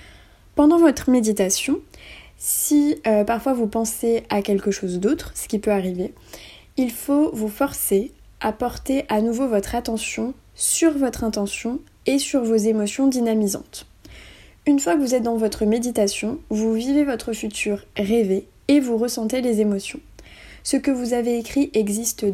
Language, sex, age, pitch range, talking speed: French, female, 20-39, 210-255 Hz, 155 wpm